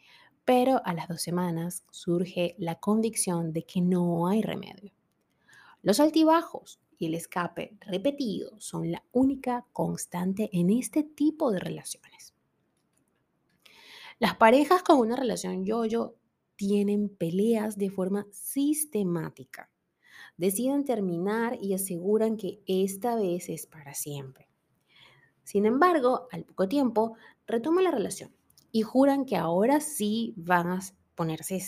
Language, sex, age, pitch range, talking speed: Spanish, female, 30-49, 180-250 Hz, 125 wpm